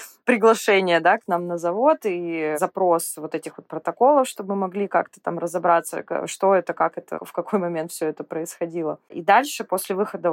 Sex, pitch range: female, 160-190 Hz